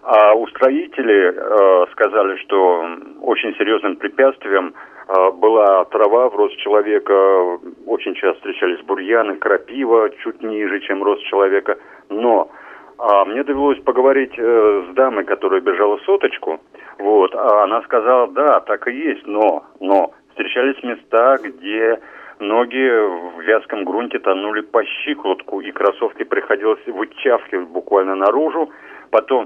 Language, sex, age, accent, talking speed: Russian, male, 40-59, native, 130 wpm